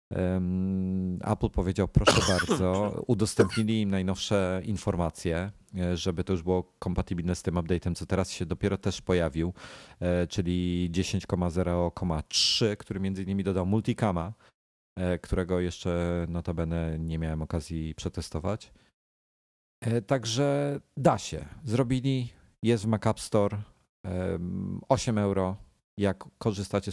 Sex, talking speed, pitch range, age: male, 110 wpm, 90-110 Hz, 40-59